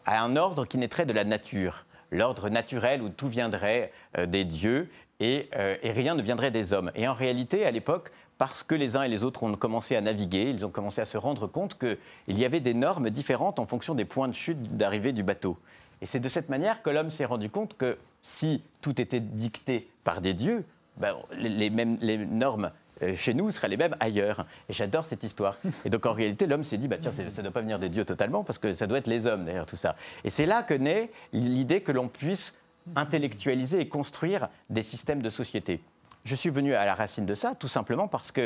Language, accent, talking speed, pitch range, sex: French, French, 235 wpm, 110-150 Hz, male